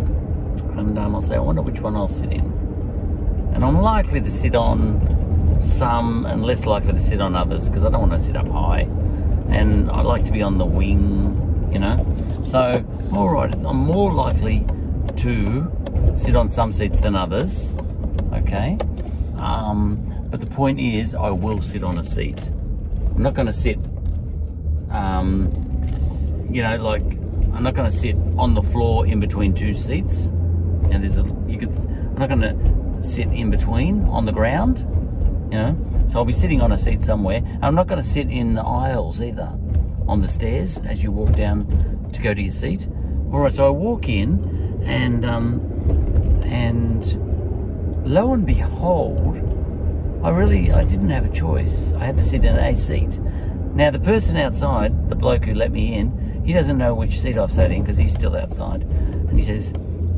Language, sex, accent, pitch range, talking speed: English, male, Australian, 80-100 Hz, 185 wpm